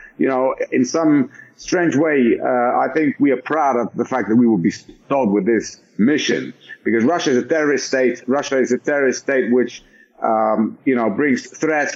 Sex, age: male, 50-69